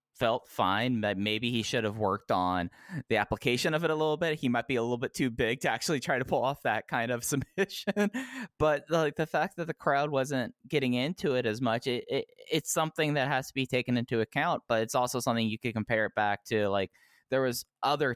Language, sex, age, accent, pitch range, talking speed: English, male, 20-39, American, 100-130 Hz, 240 wpm